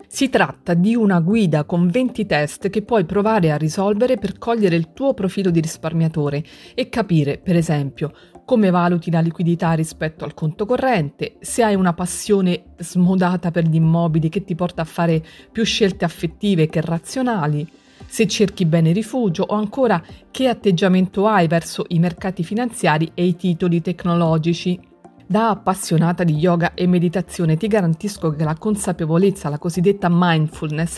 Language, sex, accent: Italian, female, native